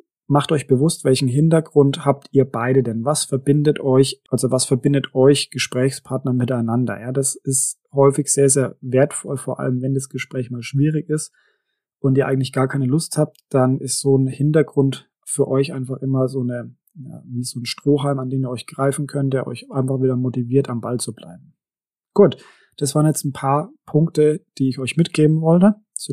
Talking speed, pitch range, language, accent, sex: 190 wpm, 130-150 Hz, German, German, male